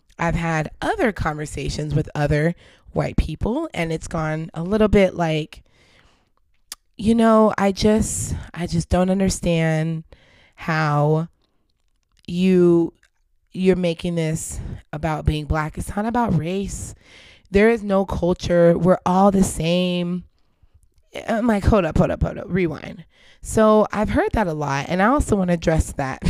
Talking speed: 150 wpm